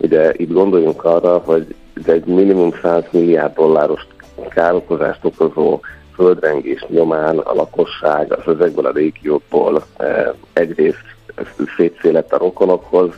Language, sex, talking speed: Hungarian, male, 110 wpm